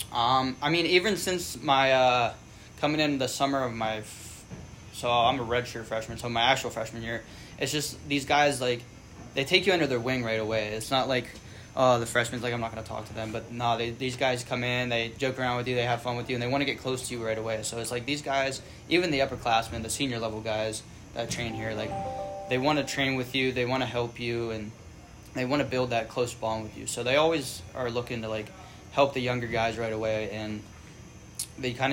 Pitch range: 115-130 Hz